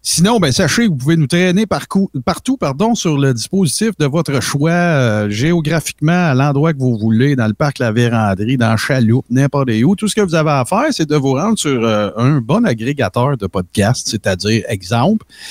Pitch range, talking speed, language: 115-170 Hz, 195 wpm, French